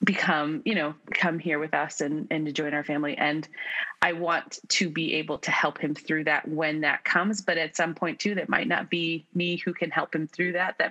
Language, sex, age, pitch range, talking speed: English, female, 20-39, 155-175 Hz, 240 wpm